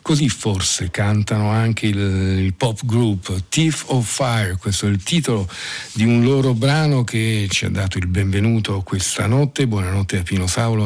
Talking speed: 170 wpm